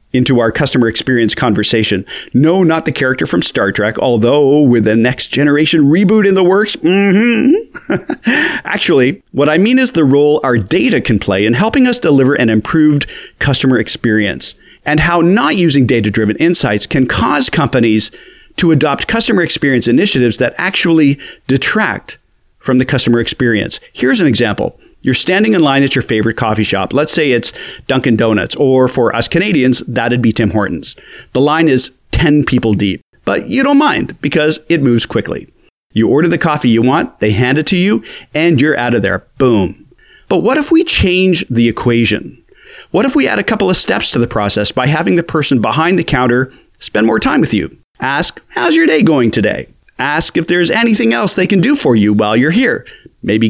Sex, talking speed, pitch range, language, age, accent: male, 190 wpm, 120-175 Hz, English, 40-59, American